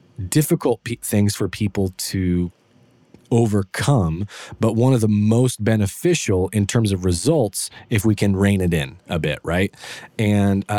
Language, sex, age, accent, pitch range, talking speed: English, male, 20-39, American, 95-115 Hz, 145 wpm